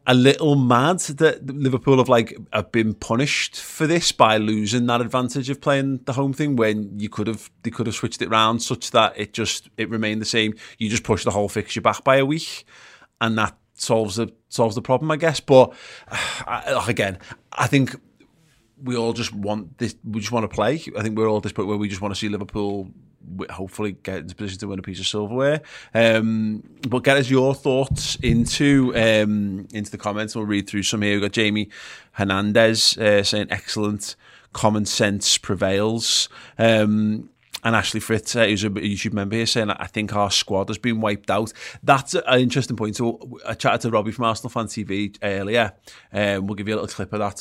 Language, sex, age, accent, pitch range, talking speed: English, male, 30-49, British, 105-125 Hz, 205 wpm